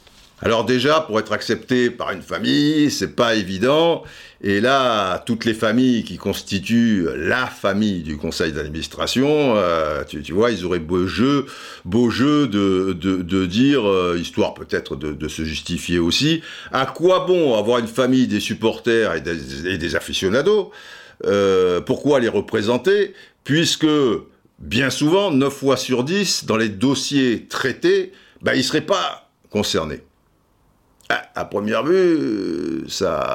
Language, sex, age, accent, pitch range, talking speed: French, male, 50-69, French, 100-155 Hz, 150 wpm